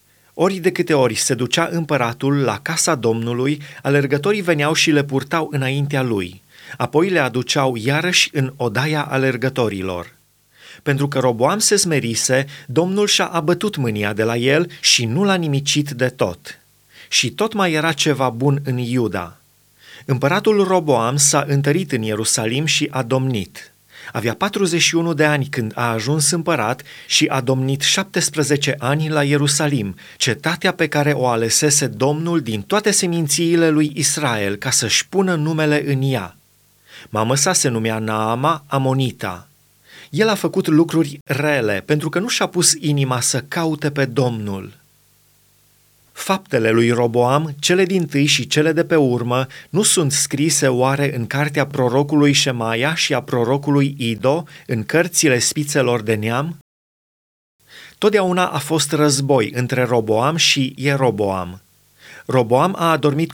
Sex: male